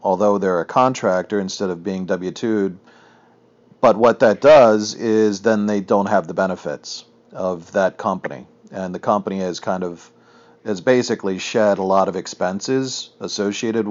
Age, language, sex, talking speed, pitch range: 40-59, English, male, 160 wpm, 105-135 Hz